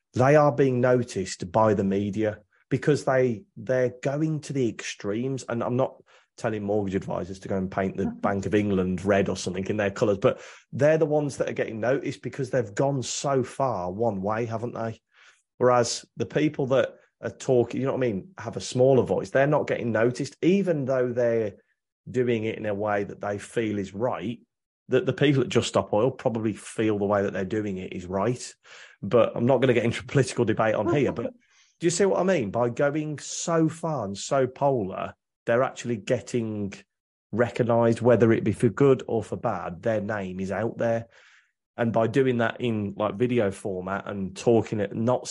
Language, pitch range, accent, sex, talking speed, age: English, 105-130 Hz, British, male, 205 wpm, 30-49